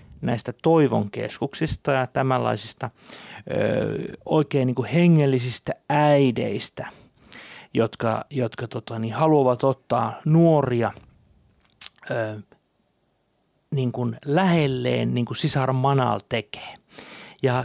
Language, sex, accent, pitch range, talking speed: Finnish, male, native, 115-145 Hz, 65 wpm